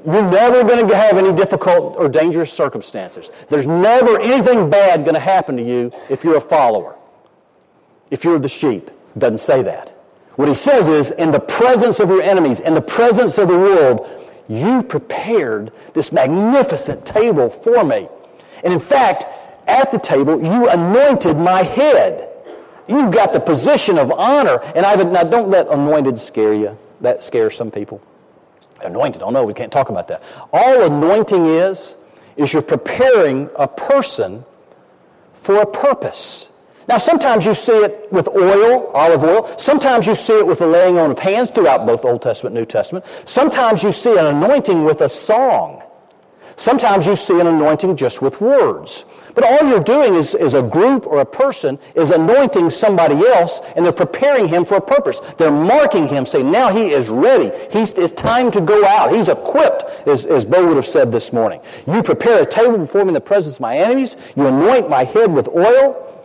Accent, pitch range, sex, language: American, 170-270 Hz, male, English